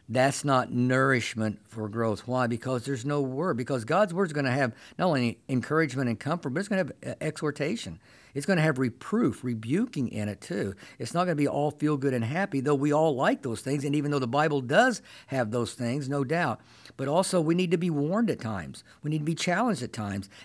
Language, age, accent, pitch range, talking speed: English, 50-69, American, 120-155 Hz, 235 wpm